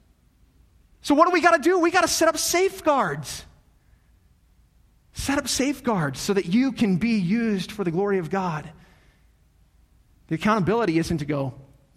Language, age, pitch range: English, 30-49, 135-180 Hz